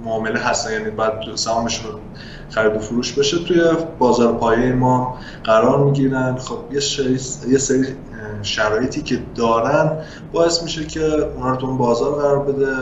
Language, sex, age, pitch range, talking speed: Persian, male, 20-39, 110-140 Hz, 150 wpm